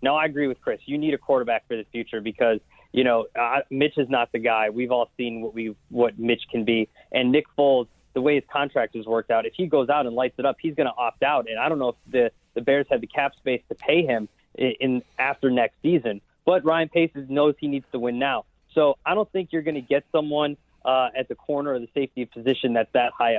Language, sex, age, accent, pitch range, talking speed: English, male, 20-39, American, 120-145 Hz, 260 wpm